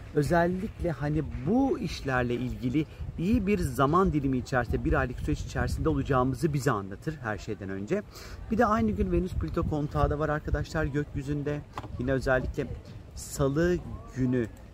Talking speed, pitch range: 145 wpm, 115-145 Hz